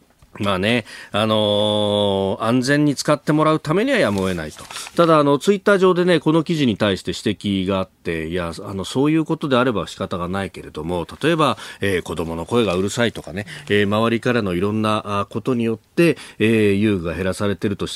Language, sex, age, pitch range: Japanese, male, 40-59, 90-120 Hz